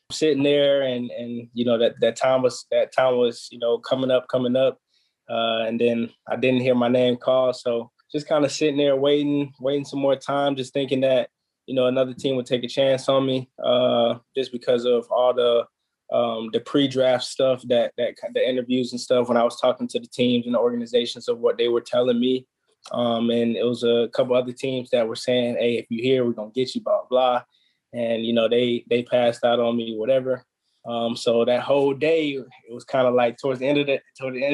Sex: male